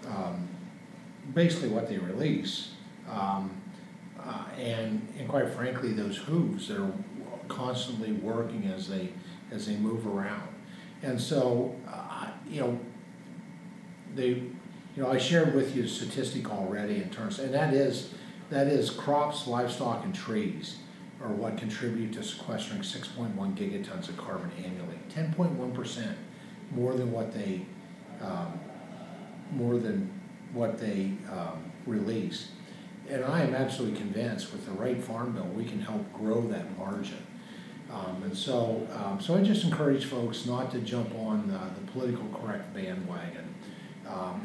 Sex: male